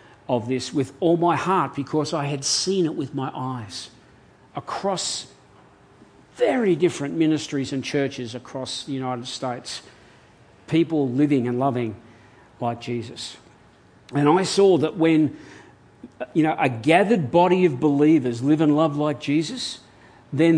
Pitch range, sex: 130-165 Hz, male